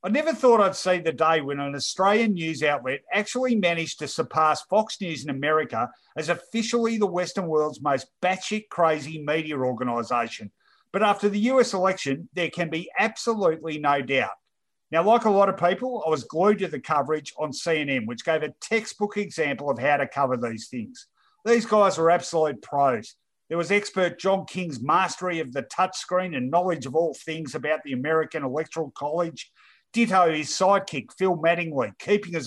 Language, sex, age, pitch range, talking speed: English, male, 50-69, 155-200 Hz, 180 wpm